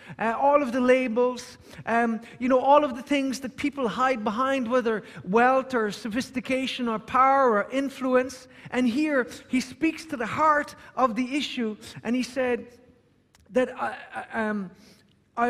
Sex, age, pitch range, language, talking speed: male, 50-69, 215-265 Hz, English, 150 wpm